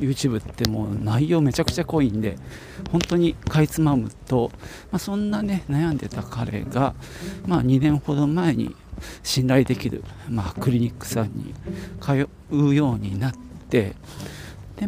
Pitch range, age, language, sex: 110-155 Hz, 40-59, Japanese, male